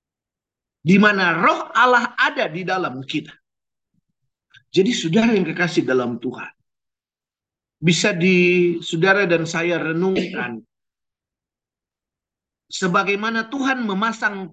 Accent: native